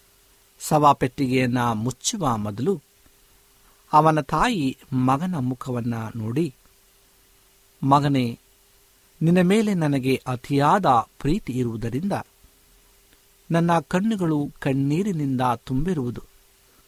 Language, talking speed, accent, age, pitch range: Kannada, 70 wpm, native, 60-79, 115-160 Hz